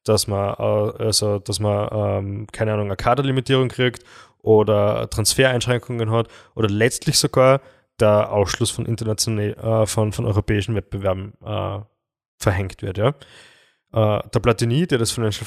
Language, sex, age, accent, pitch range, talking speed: German, male, 20-39, German, 110-130 Hz, 135 wpm